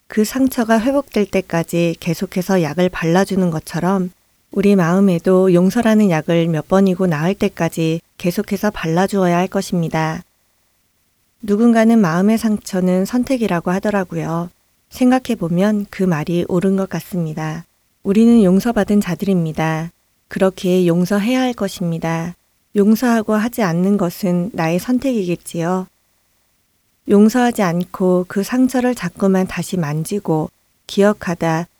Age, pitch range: 30-49, 170-210 Hz